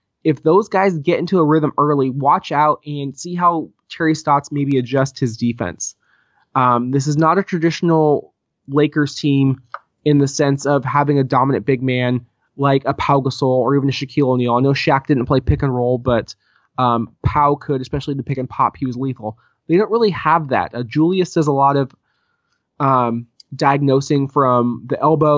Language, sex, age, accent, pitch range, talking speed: English, male, 20-39, American, 125-150 Hz, 195 wpm